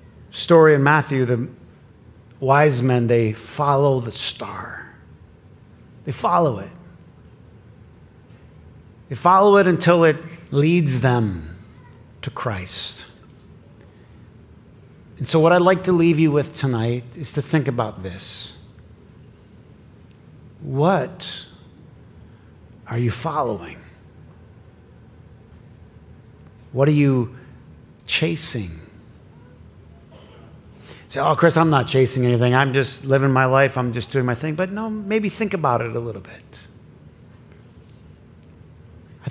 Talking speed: 110 wpm